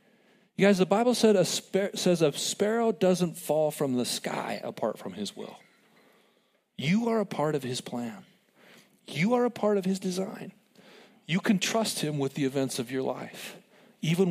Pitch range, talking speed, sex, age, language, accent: 140-200 Hz, 180 wpm, male, 40-59, English, American